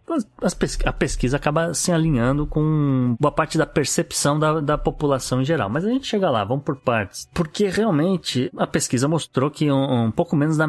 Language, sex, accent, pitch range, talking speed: Portuguese, male, Brazilian, 110-145 Hz, 190 wpm